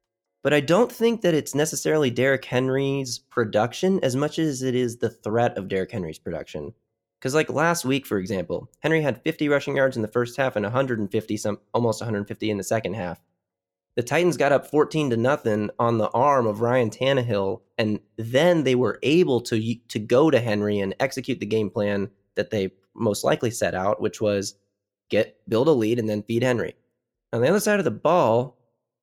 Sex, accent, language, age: male, American, English, 20-39